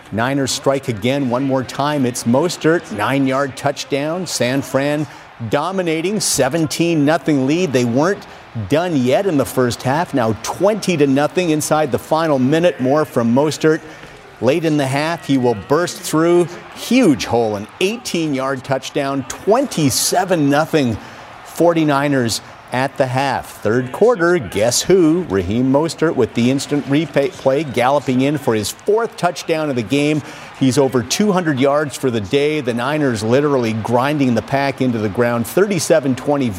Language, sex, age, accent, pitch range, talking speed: English, male, 50-69, American, 125-155 Hz, 150 wpm